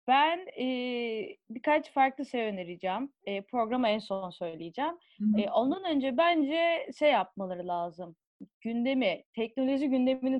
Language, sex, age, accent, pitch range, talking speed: Turkish, female, 30-49, native, 215-285 Hz, 120 wpm